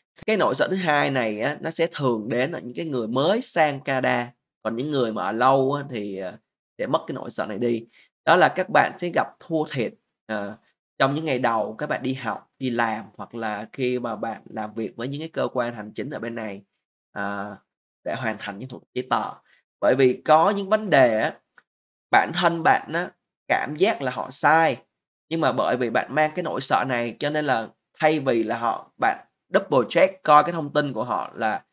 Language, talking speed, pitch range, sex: Vietnamese, 225 wpm, 115-155 Hz, male